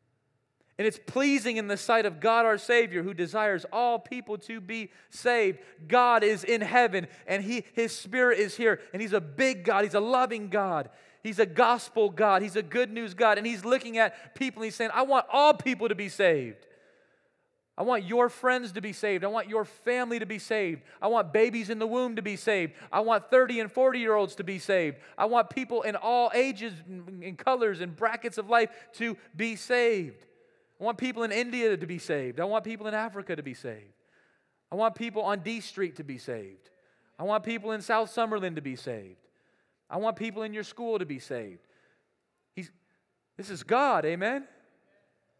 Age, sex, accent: 30-49, male, American